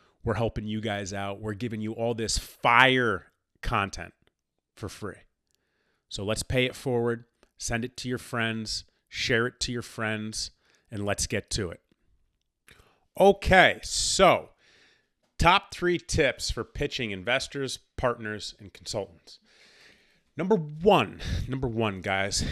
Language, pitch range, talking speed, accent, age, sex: English, 105-135 Hz, 135 wpm, American, 30-49, male